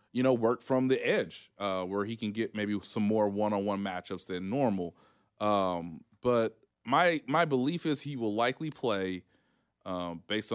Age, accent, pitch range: 20-39, American, 95-120 Hz